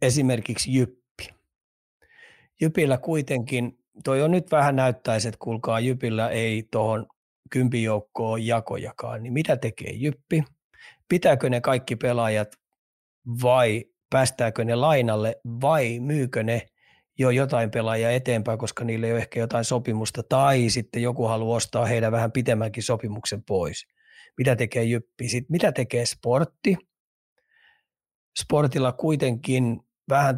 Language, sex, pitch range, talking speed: Finnish, male, 115-135 Hz, 120 wpm